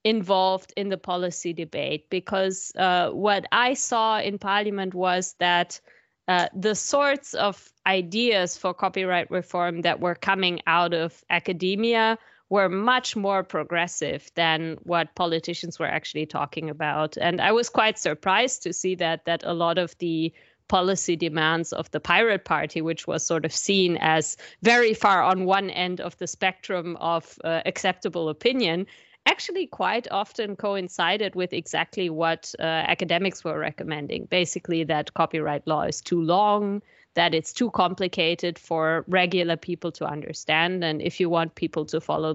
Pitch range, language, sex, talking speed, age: 165-190 Hz, English, female, 155 wpm, 20-39